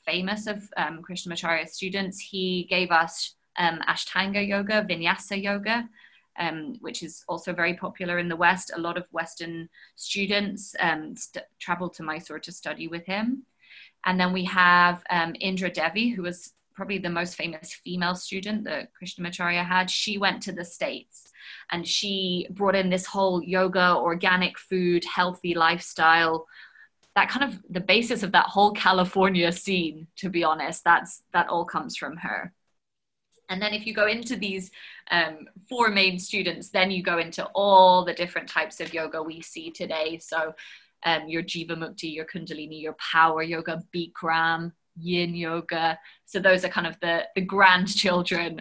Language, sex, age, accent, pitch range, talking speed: English, female, 20-39, British, 165-195 Hz, 165 wpm